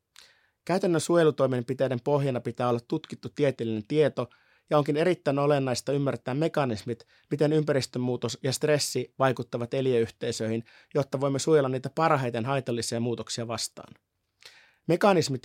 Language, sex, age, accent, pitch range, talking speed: Finnish, male, 30-49, native, 120-145 Hz, 115 wpm